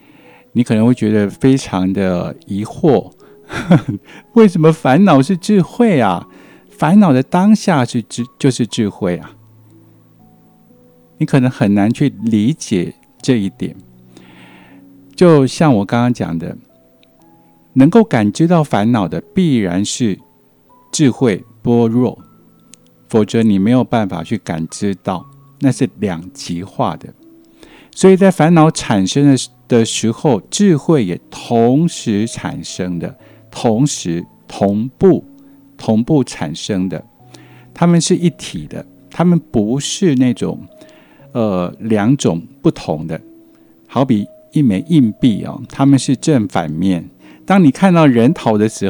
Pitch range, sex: 100-155 Hz, male